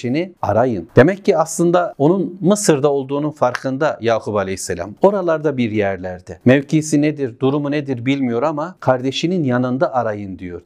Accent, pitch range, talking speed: native, 125-160 Hz, 130 wpm